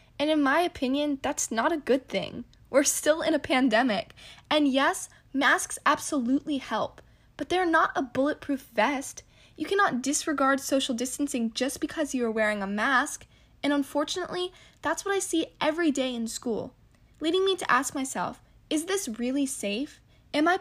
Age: 10-29